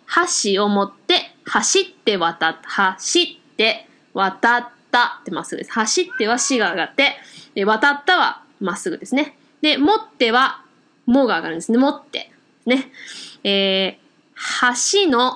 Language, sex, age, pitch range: Japanese, female, 20-39, 240-345 Hz